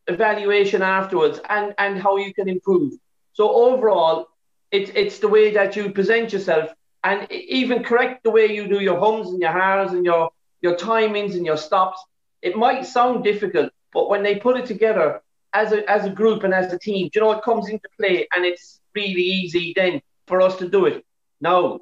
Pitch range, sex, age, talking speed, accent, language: 155-210 Hz, male, 40-59, 200 wpm, British, English